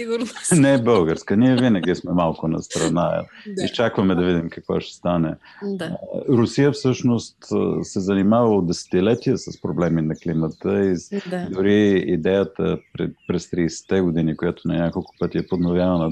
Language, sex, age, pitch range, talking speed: Bulgarian, male, 40-59, 85-120 Hz, 140 wpm